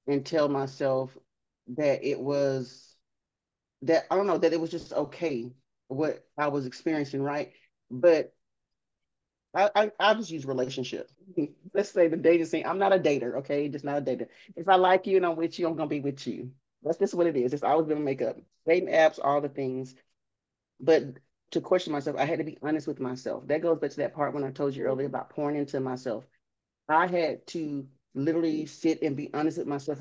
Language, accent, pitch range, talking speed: English, American, 135-165 Hz, 210 wpm